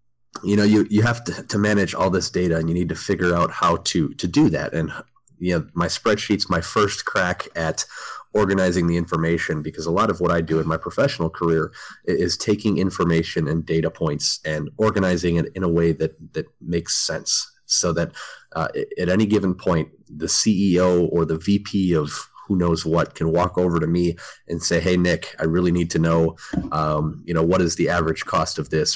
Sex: male